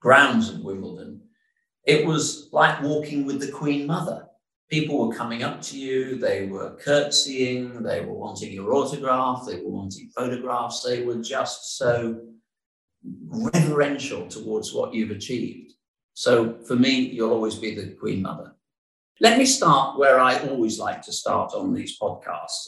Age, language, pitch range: 50-69, English, 110-155 Hz